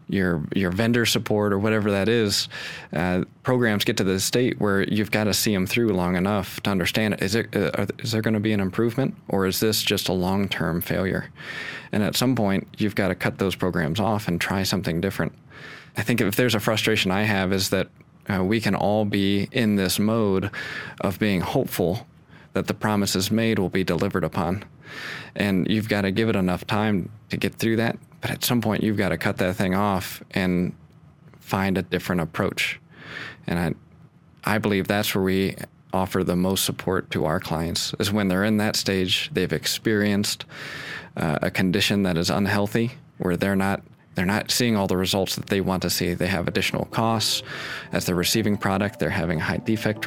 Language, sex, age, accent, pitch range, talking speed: English, male, 20-39, American, 95-110 Hz, 200 wpm